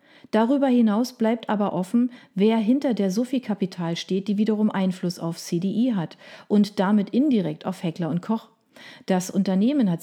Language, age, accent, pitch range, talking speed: German, 40-59, German, 185-235 Hz, 155 wpm